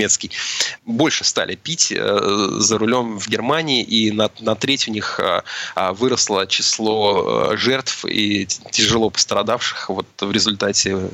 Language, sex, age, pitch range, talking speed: Russian, male, 30-49, 100-120 Hz, 125 wpm